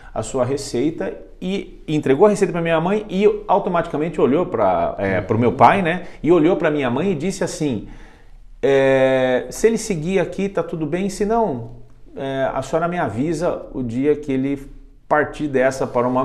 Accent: Brazilian